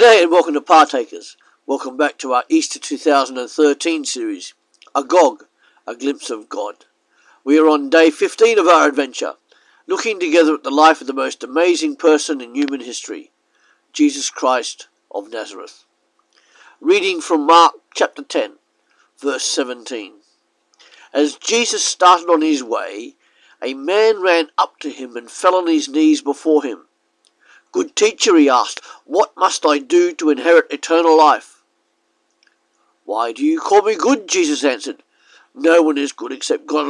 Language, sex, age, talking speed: English, male, 50-69, 155 wpm